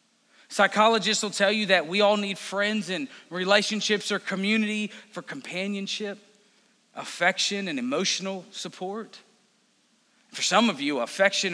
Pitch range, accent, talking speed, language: 195-235 Hz, American, 125 wpm, English